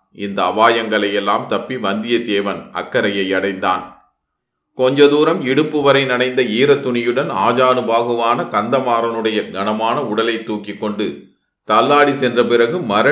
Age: 30-49